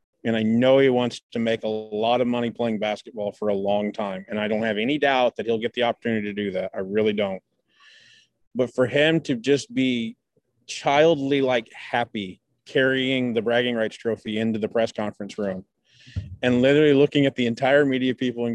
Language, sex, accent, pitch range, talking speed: English, male, American, 110-130 Hz, 200 wpm